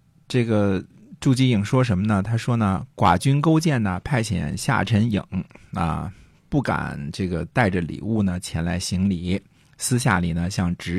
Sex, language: male, Chinese